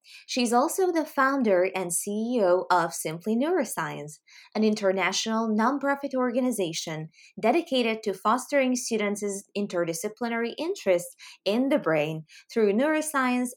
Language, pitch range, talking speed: English, 180-245 Hz, 105 wpm